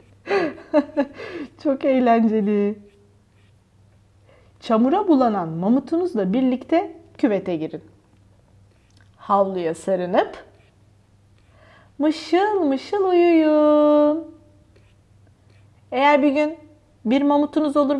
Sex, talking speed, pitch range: female, 65 wpm, 200-300 Hz